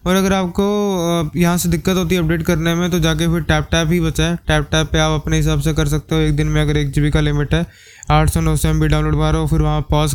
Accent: native